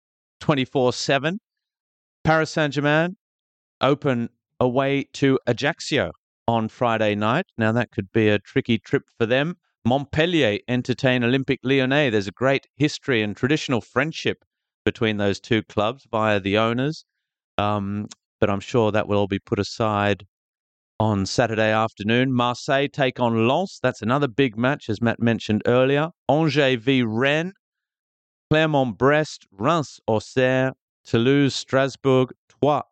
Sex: male